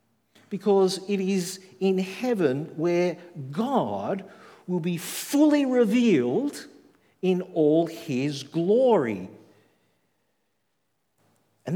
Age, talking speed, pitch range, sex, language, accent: 50-69, 80 wpm, 135-185 Hz, male, English, Australian